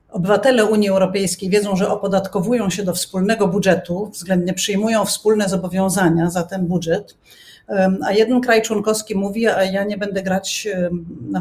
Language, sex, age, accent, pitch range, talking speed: Polish, female, 40-59, native, 185-215 Hz, 145 wpm